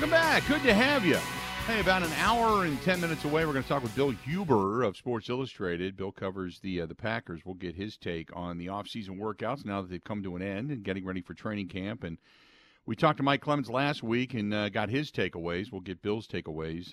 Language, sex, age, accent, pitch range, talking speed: English, male, 50-69, American, 95-130 Hz, 240 wpm